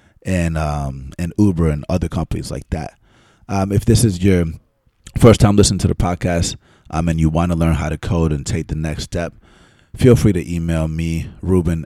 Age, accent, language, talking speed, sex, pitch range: 30-49, American, English, 200 wpm, male, 80-95 Hz